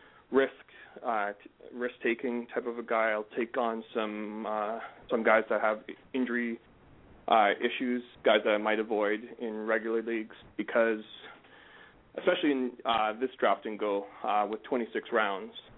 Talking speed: 150 wpm